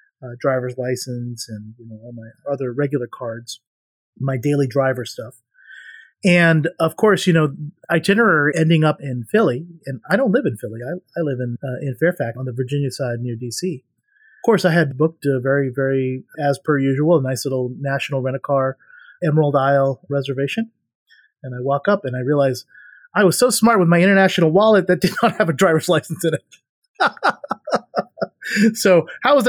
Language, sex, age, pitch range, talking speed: English, male, 30-49, 130-175 Hz, 185 wpm